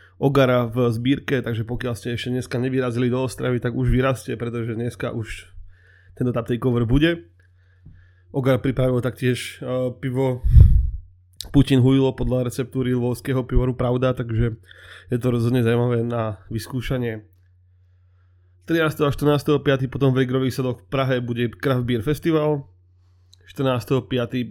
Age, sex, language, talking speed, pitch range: 20-39, male, Czech, 130 wpm, 110-135 Hz